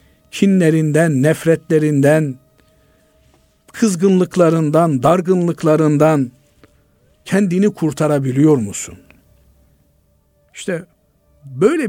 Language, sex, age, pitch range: Turkish, male, 50-69, 110-165 Hz